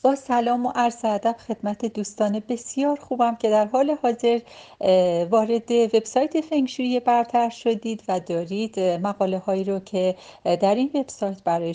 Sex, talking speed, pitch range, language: female, 145 wpm, 175-230 Hz, Persian